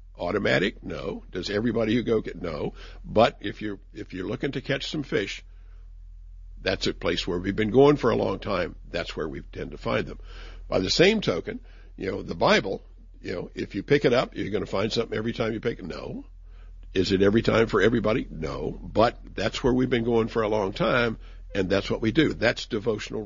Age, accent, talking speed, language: 60-79, American, 220 wpm, English